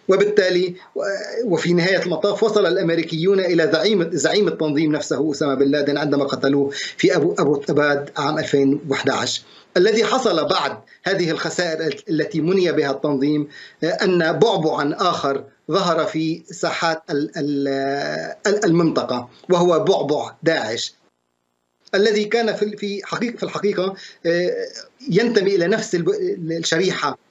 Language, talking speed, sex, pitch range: Arabic, 110 wpm, male, 140-175 Hz